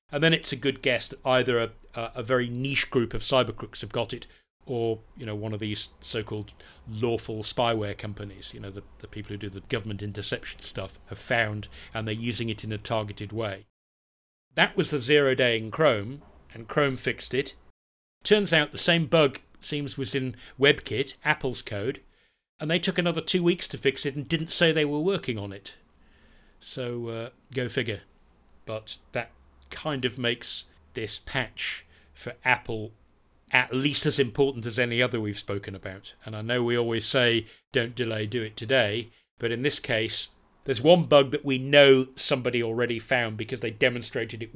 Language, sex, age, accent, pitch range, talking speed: English, male, 40-59, British, 110-135 Hz, 190 wpm